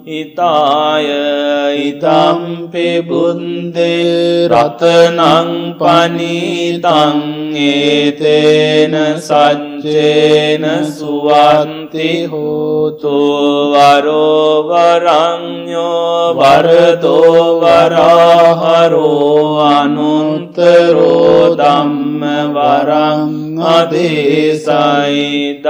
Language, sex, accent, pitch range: English, male, Indian, 150-170 Hz